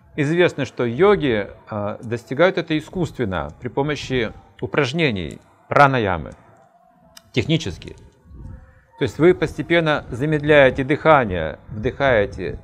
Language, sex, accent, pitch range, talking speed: Russian, male, native, 110-155 Hz, 85 wpm